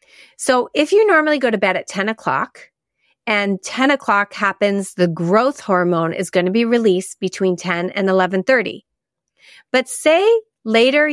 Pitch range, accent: 180-245 Hz, American